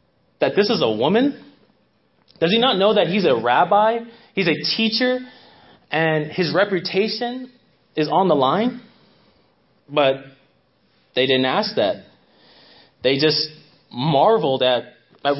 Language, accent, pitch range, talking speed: English, American, 145-200 Hz, 130 wpm